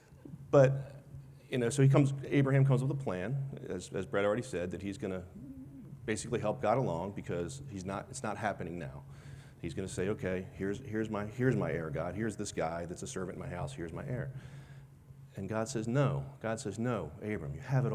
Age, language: 40-59, English